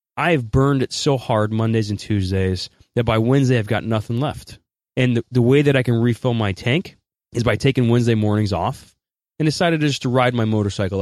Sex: male